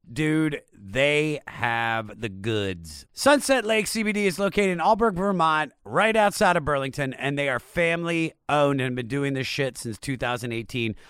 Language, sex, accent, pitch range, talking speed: English, male, American, 125-185 Hz, 155 wpm